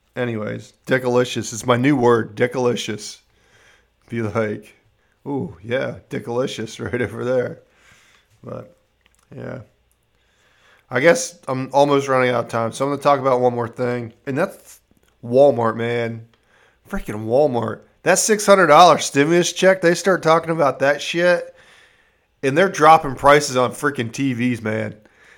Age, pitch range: 40-59, 115-155 Hz